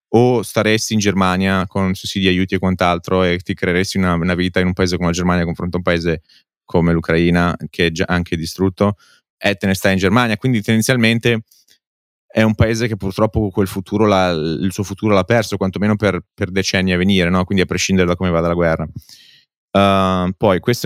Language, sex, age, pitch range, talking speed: Italian, male, 30-49, 90-110 Hz, 205 wpm